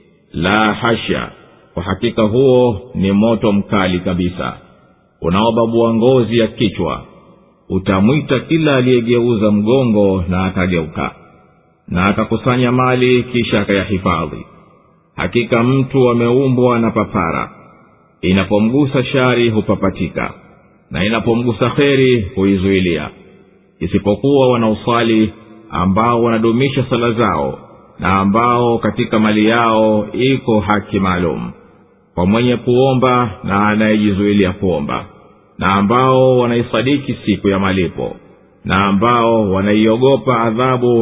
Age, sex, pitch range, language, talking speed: 50-69, male, 100-125 Hz, Swahili, 95 wpm